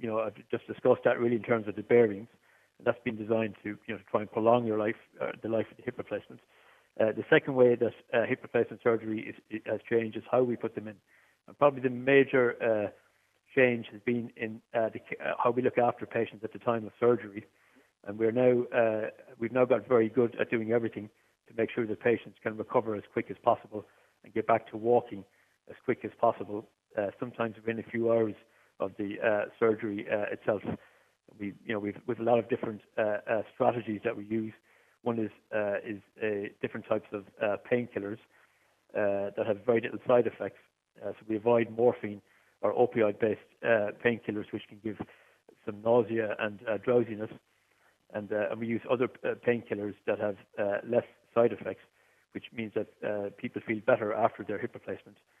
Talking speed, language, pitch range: 205 wpm, English, 105-120 Hz